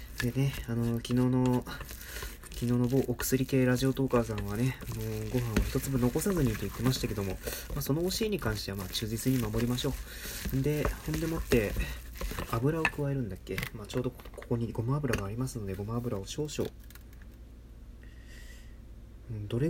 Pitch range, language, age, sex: 100-135 Hz, Japanese, 20-39, male